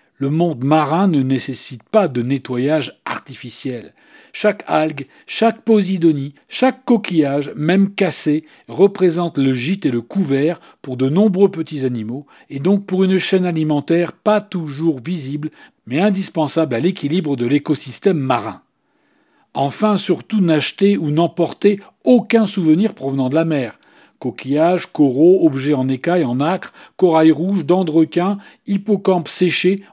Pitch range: 140-190 Hz